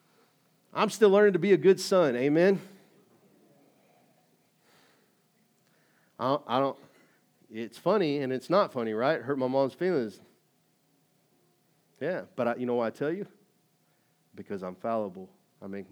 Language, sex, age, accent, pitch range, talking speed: English, male, 40-59, American, 105-125 Hz, 145 wpm